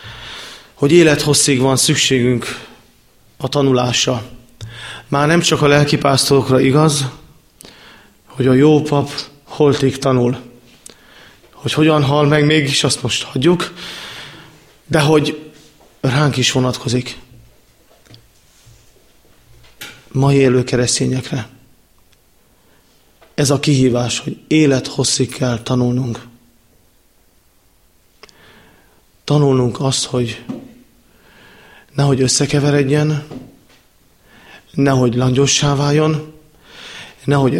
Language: Hungarian